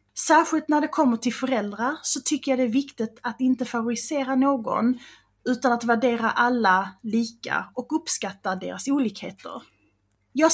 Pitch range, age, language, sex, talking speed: 210-270 Hz, 30-49, English, female, 150 wpm